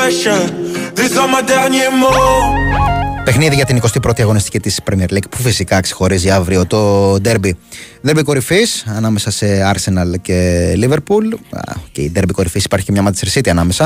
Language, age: Greek, 20-39